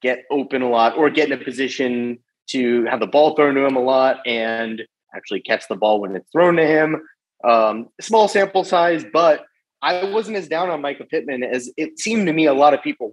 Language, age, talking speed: English, 30-49, 225 wpm